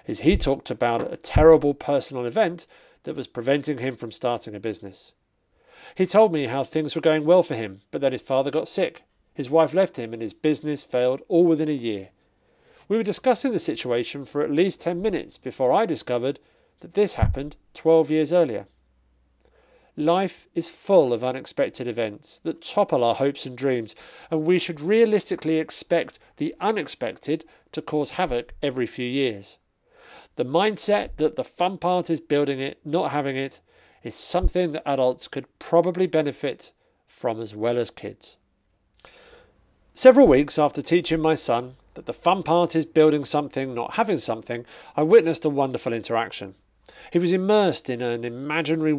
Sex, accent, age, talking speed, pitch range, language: male, British, 40-59, 170 wpm, 125-170 Hz, English